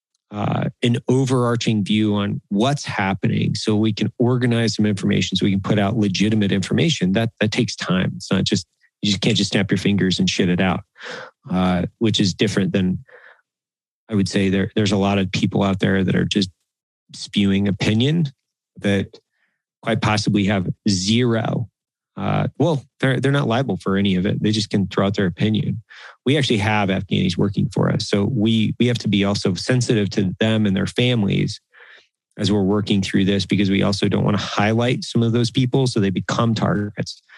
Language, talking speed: English, 195 wpm